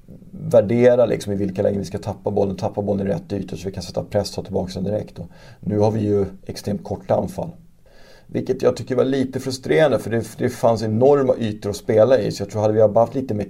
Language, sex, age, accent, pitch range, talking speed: Swedish, male, 30-49, native, 95-115 Hz, 235 wpm